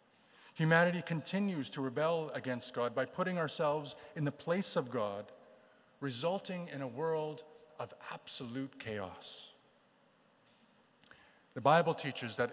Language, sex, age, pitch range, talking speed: English, male, 50-69, 120-155 Hz, 120 wpm